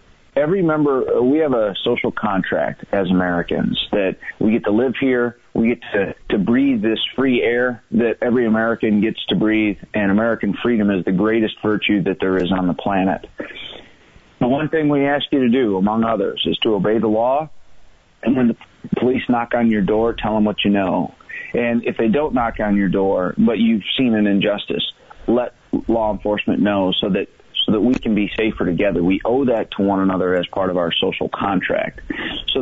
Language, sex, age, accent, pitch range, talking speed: English, male, 30-49, American, 100-120 Hz, 200 wpm